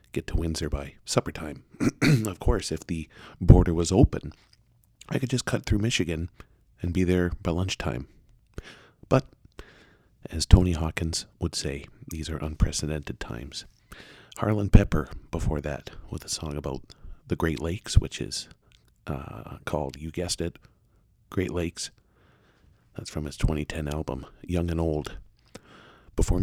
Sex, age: male, 40-59